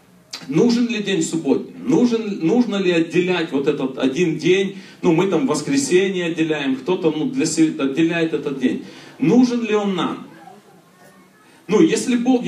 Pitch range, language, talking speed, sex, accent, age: 165-240 Hz, Russian, 135 wpm, male, native, 40-59